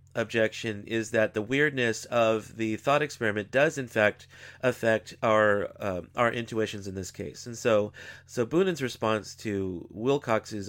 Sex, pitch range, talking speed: male, 105-125 Hz, 150 wpm